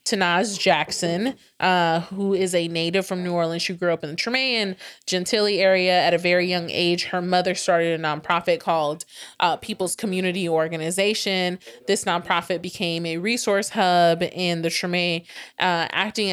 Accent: American